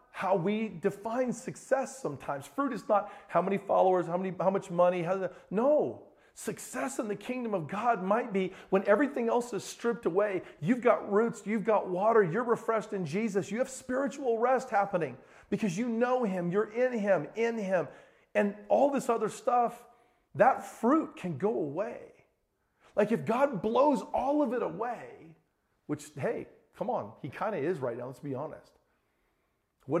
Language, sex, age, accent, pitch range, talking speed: English, male, 40-59, American, 175-240 Hz, 170 wpm